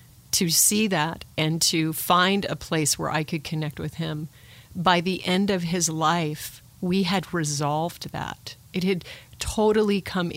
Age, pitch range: 40-59, 155-175 Hz